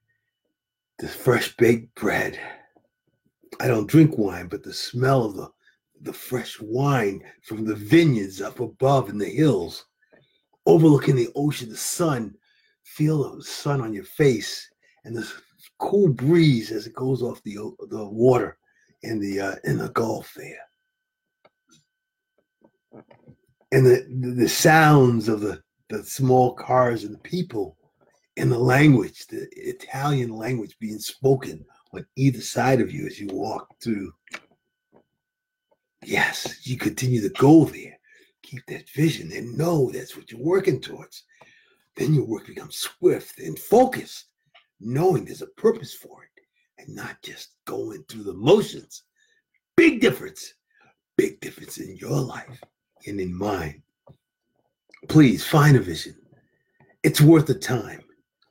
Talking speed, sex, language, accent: 140 wpm, male, English, American